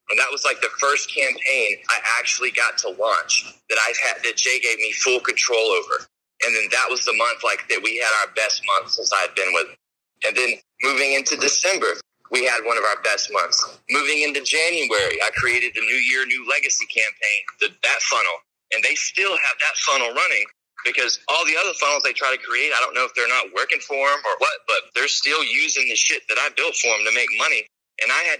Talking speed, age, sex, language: 230 wpm, 30-49, male, English